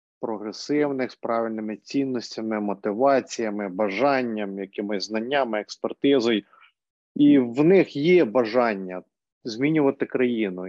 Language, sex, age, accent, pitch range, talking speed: Ukrainian, male, 30-49, native, 125-160 Hz, 90 wpm